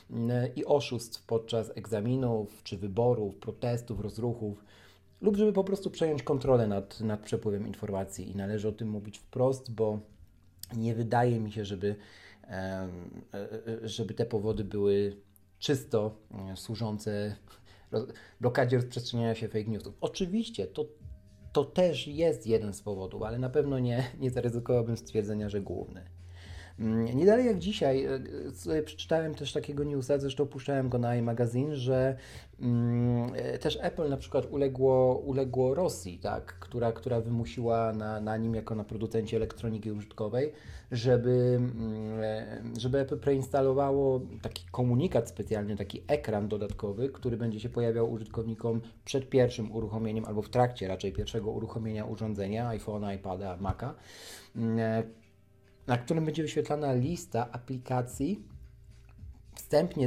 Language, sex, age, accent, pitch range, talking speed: Polish, male, 40-59, native, 105-130 Hz, 125 wpm